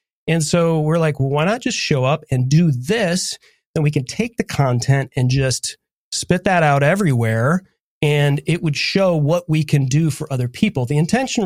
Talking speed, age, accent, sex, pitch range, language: 200 wpm, 30-49, American, male, 130-180 Hz, English